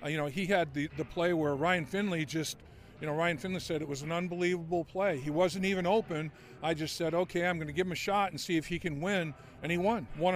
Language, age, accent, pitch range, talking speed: English, 50-69, American, 155-195 Hz, 265 wpm